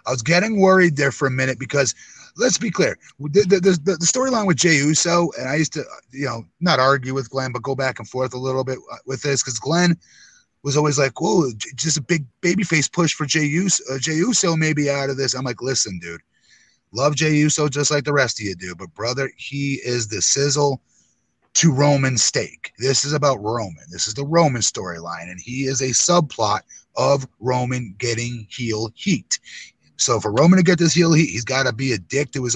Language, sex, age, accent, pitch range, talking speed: English, male, 30-49, American, 125-160 Hz, 210 wpm